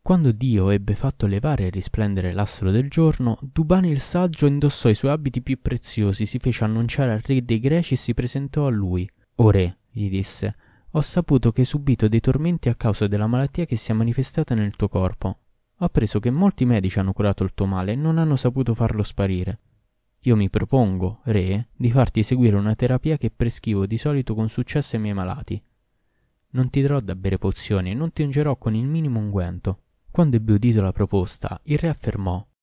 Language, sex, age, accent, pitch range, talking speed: Italian, male, 20-39, native, 105-140 Hz, 200 wpm